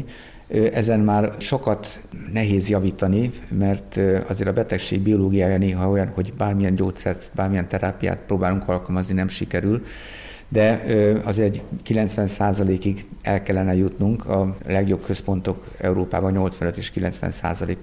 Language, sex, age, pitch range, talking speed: Hungarian, male, 50-69, 95-105 Hz, 120 wpm